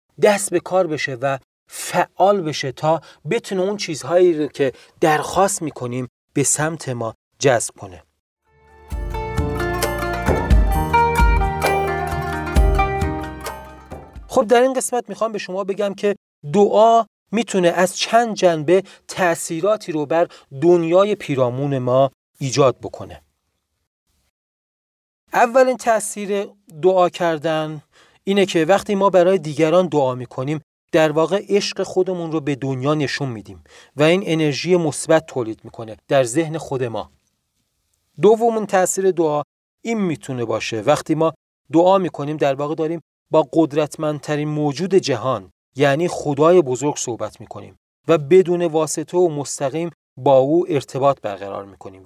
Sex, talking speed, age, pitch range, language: male, 120 wpm, 40-59, 125-180 Hz, Persian